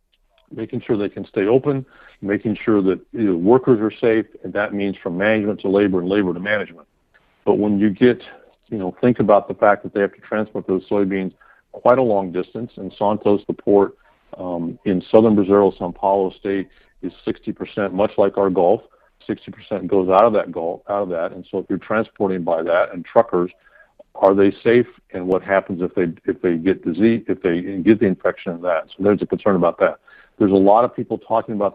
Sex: male